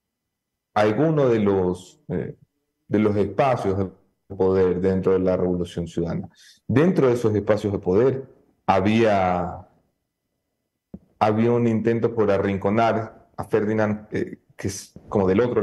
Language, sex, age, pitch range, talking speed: English, male, 40-59, 95-120 Hz, 130 wpm